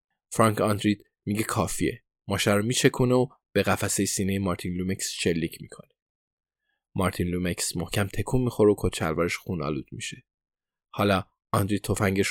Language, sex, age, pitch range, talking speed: Persian, male, 20-39, 95-110 Hz, 130 wpm